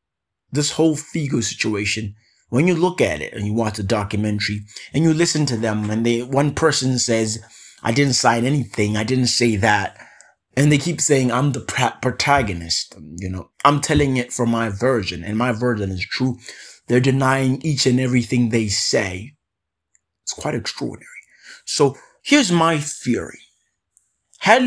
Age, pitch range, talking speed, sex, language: 30-49, 105-140 Hz, 165 wpm, male, English